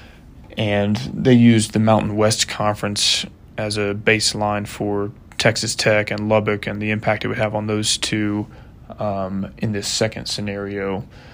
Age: 20-39